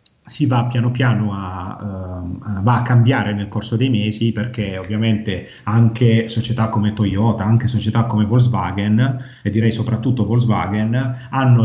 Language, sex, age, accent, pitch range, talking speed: Italian, male, 30-49, native, 105-125 Hz, 145 wpm